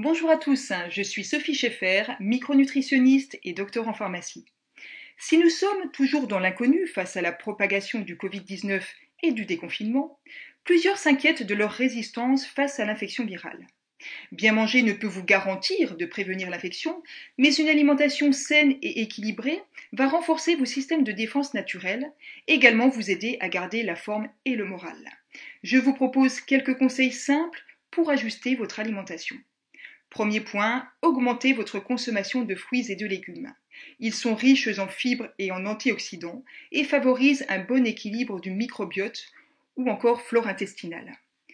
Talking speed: 155 wpm